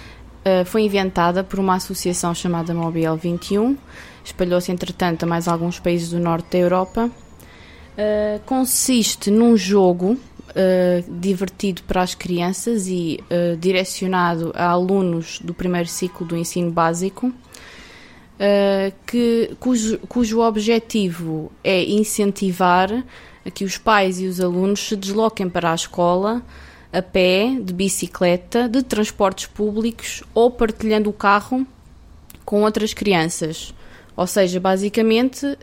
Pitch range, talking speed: 175-210 Hz, 115 wpm